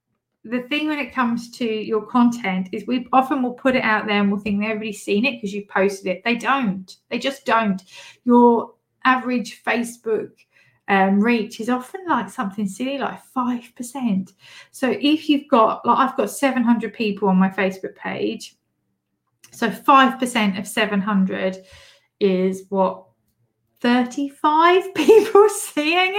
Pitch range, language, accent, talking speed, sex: 210-275 Hz, English, British, 155 wpm, female